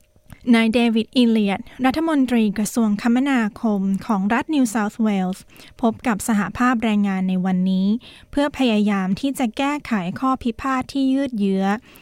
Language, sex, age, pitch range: Thai, female, 20-39, 205-250 Hz